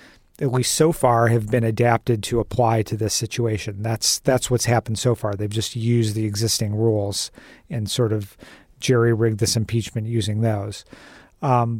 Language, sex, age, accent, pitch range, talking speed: English, male, 40-59, American, 110-125 Hz, 170 wpm